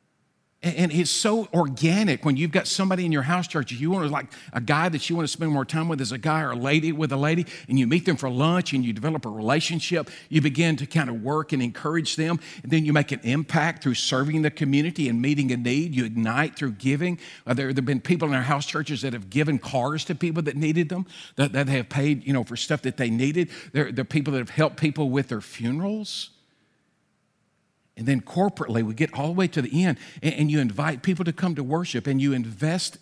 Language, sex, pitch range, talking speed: English, male, 135-165 Hz, 240 wpm